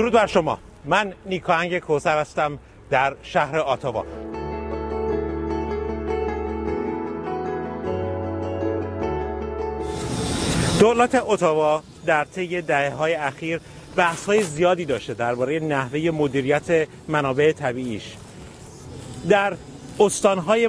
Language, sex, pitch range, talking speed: Persian, male, 150-195 Hz, 80 wpm